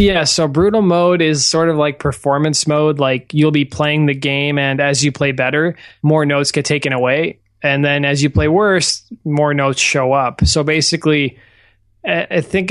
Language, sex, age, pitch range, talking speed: English, male, 20-39, 135-155 Hz, 185 wpm